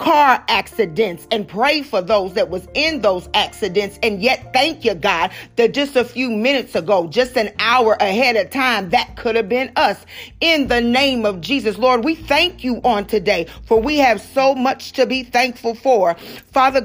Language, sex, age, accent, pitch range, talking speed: English, female, 40-59, American, 220-260 Hz, 190 wpm